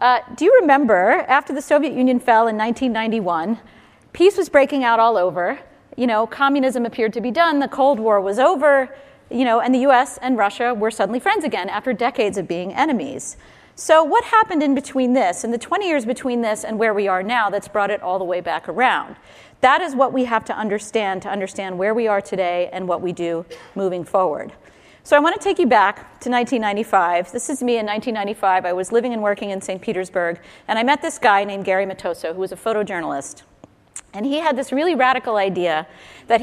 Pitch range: 200-275 Hz